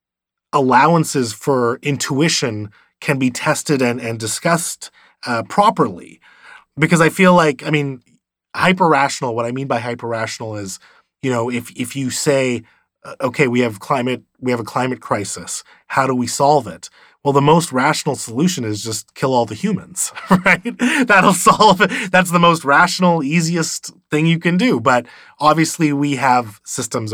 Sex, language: male, English